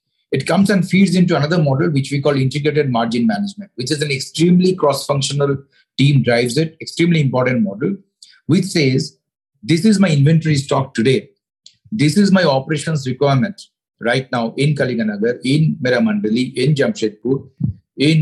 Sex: male